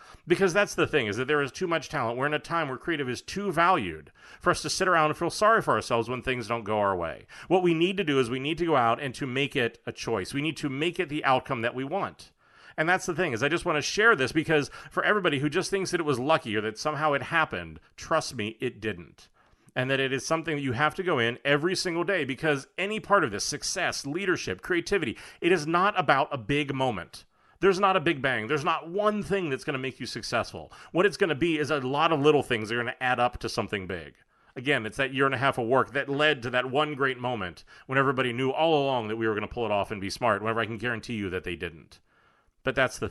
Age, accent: 30-49, American